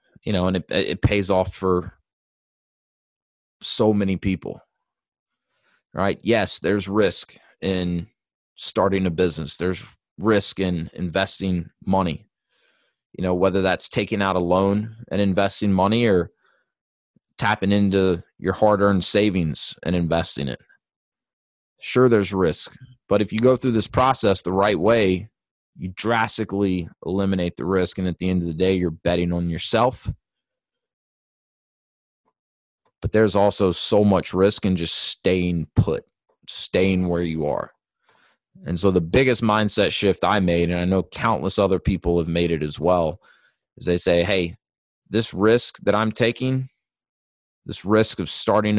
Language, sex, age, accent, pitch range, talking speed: English, male, 20-39, American, 90-105 Hz, 145 wpm